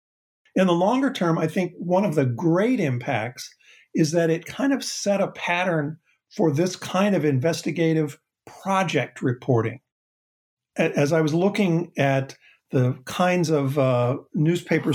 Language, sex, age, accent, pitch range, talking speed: English, male, 50-69, American, 130-165 Hz, 145 wpm